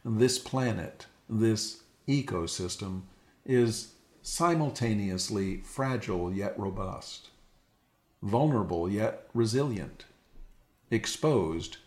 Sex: male